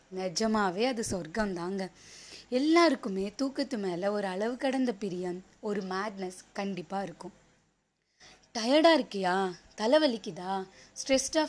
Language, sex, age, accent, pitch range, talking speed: Tamil, female, 20-39, native, 190-255 Hz, 95 wpm